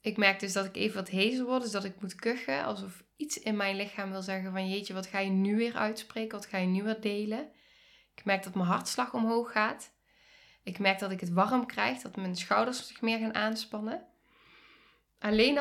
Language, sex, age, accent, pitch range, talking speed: Dutch, female, 10-29, Dutch, 190-230 Hz, 220 wpm